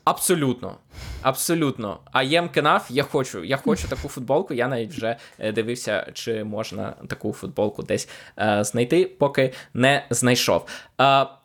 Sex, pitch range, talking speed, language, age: male, 115-145 Hz, 120 wpm, Ukrainian, 20-39